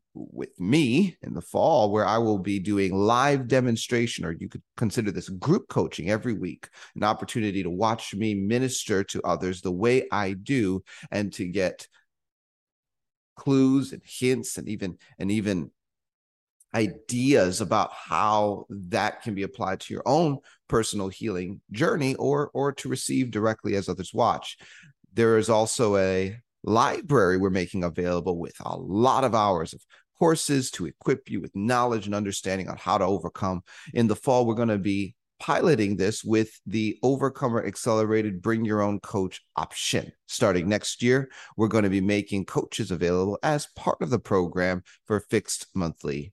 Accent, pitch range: American, 95-125 Hz